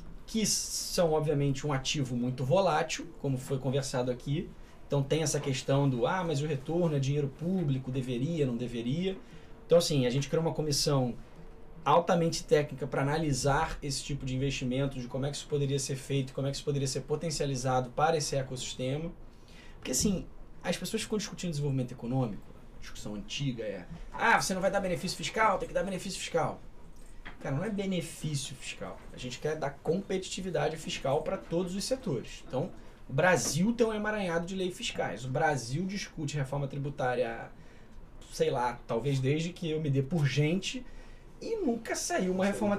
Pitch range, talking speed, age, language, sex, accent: 140-185 Hz, 180 wpm, 20-39, Portuguese, male, Brazilian